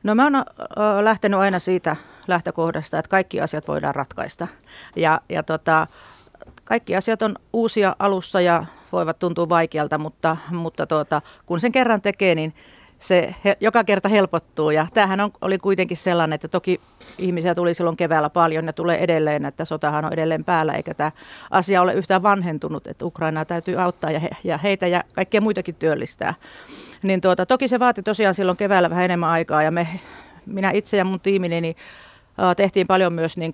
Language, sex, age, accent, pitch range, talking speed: Finnish, female, 40-59, native, 160-195 Hz, 175 wpm